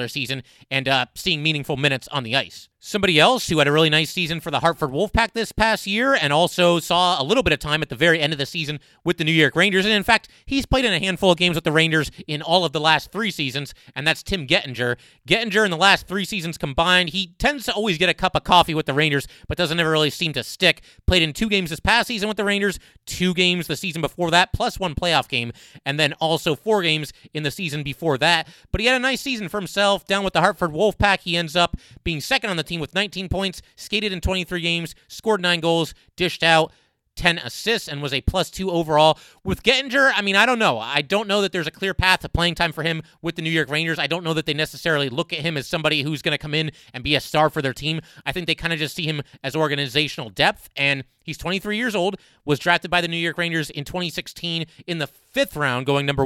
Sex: male